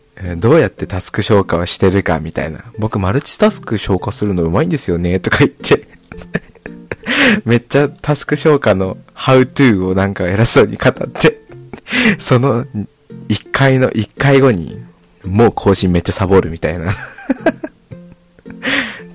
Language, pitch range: Japanese, 85-115 Hz